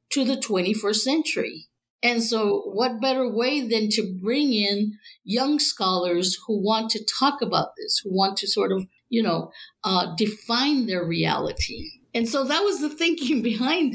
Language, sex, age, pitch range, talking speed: English, female, 50-69, 190-245 Hz, 170 wpm